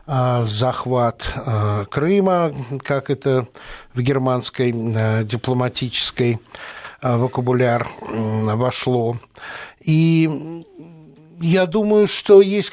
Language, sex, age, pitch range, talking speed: Russian, male, 60-79, 125-165 Hz, 65 wpm